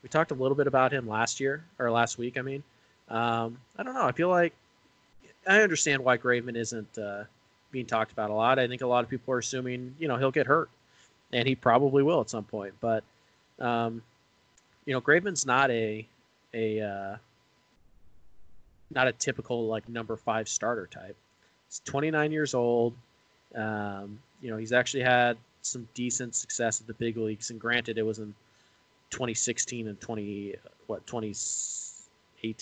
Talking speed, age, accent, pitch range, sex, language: 175 wpm, 20-39, American, 110-130 Hz, male, English